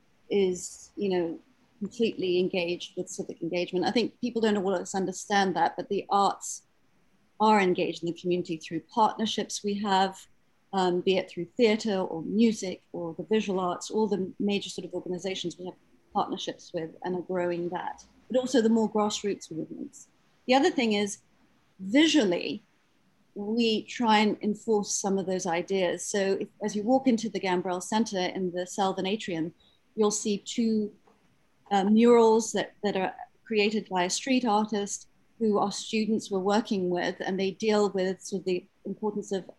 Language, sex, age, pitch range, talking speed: English, female, 40-59, 185-215 Hz, 170 wpm